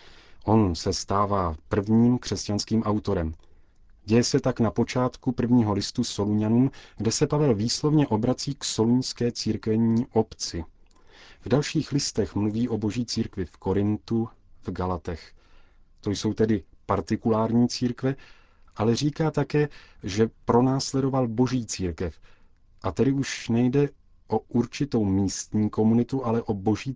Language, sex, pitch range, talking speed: Czech, male, 100-120 Hz, 125 wpm